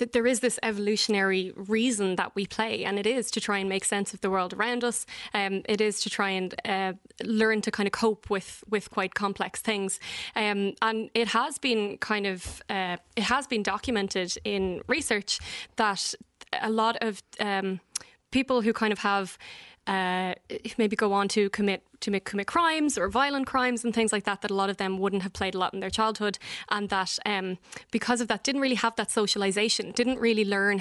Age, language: 20-39, English